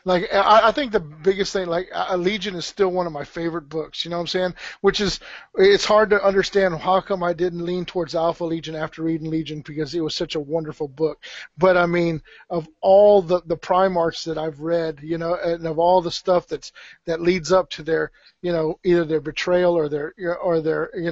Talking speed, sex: 220 wpm, male